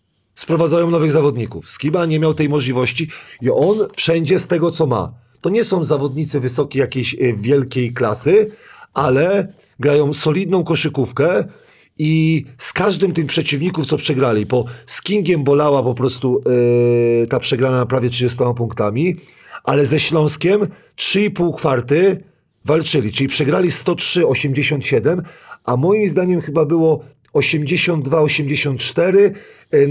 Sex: male